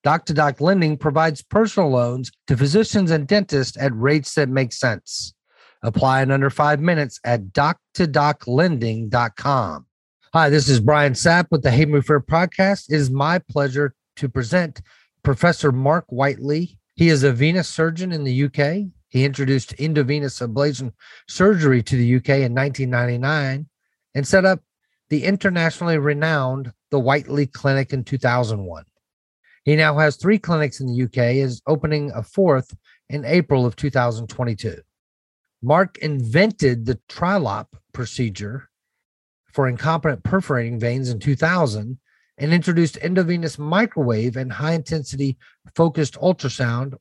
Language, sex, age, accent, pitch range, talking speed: English, male, 40-59, American, 130-160 Hz, 135 wpm